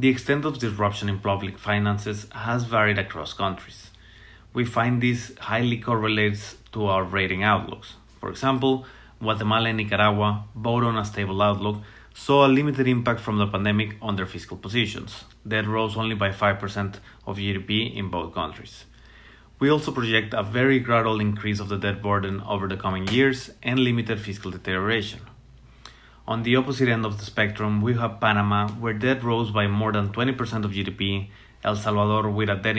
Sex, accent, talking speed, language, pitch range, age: male, Mexican, 170 wpm, English, 100-120 Hz, 30-49